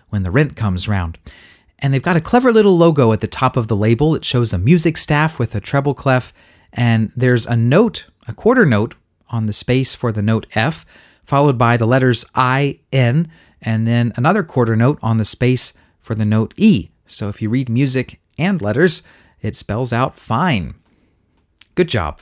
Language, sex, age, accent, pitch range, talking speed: English, male, 30-49, American, 110-160 Hz, 195 wpm